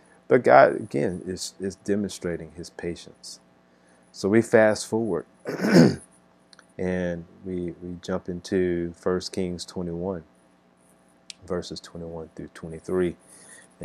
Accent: American